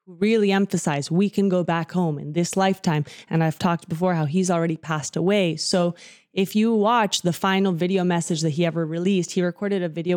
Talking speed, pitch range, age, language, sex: 205 wpm, 175-230 Hz, 20-39, English, female